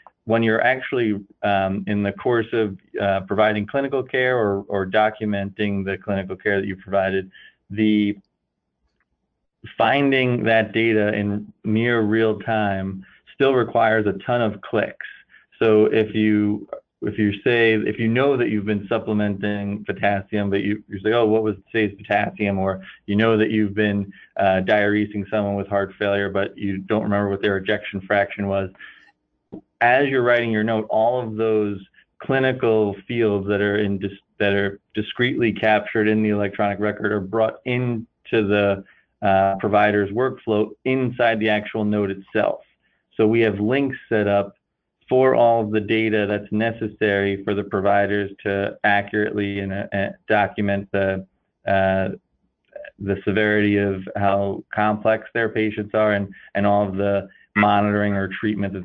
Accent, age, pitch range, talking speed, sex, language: American, 30-49, 100-110 Hz, 155 wpm, male, English